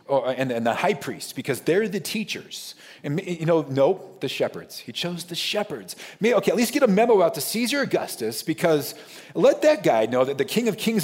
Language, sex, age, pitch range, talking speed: English, male, 40-59, 140-205 Hz, 205 wpm